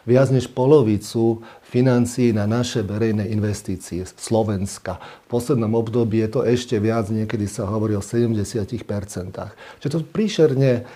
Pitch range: 110-145 Hz